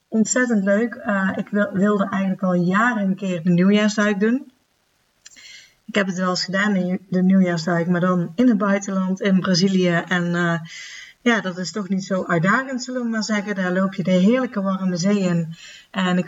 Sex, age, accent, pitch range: female, 30-49, Dutch, 180-215 Hz